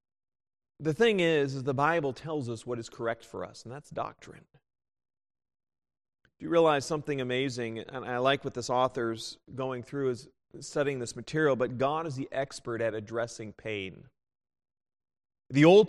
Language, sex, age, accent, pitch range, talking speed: English, male, 40-59, American, 120-155 Hz, 160 wpm